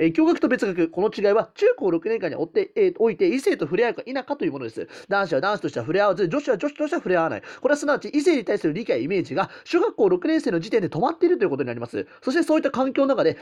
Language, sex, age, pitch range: Japanese, male, 30-49, 205-320 Hz